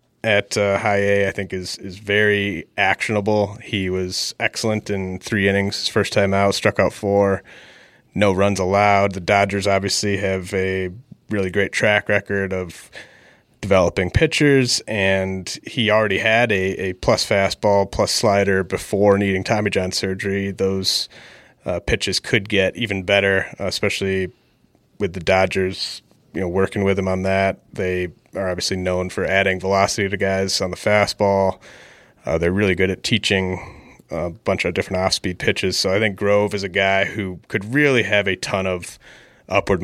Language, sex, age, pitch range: English, male, 30-49, 95-105 Hz